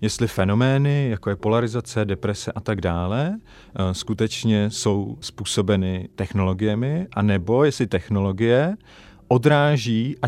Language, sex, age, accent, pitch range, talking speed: Czech, male, 40-59, native, 100-120 Hz, 105 wpm